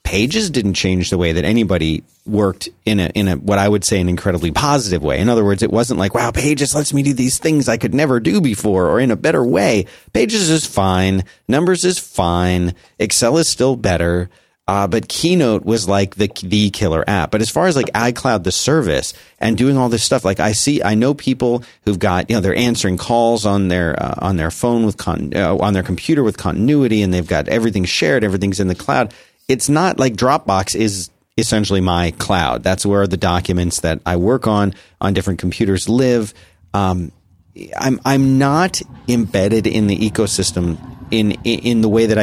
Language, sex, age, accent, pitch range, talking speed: English, male, 40-59, American, 90-115 Hz, 205 wpm